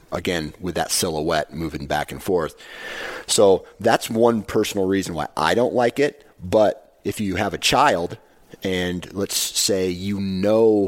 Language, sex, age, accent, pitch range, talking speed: English, male, 40-59, American, 85-100 Hz, 160 wpm